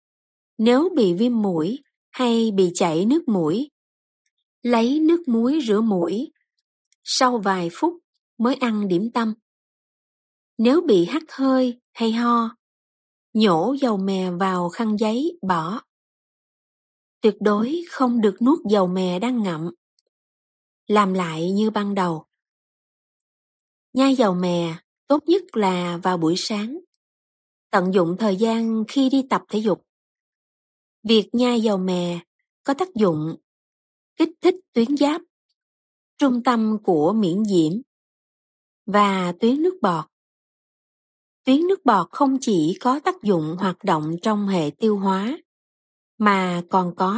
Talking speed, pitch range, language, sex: 130 wpm, 185-260 Hz, Vietnamese, female